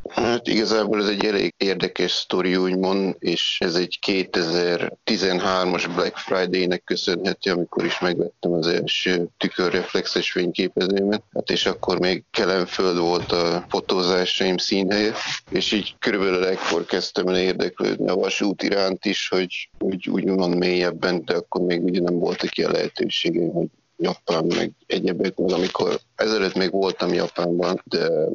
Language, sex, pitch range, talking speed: Hungarian, male, 90-95 Hz, 135 wpm